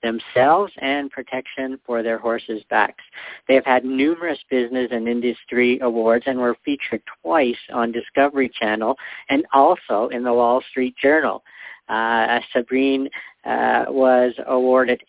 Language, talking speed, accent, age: English, 135 wpm, American, 50-69